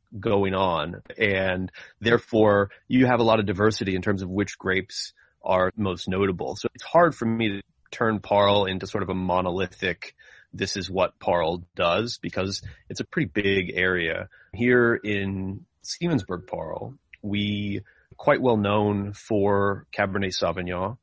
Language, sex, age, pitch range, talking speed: English, male, 30-49, 95-110 Hz, 150 wpm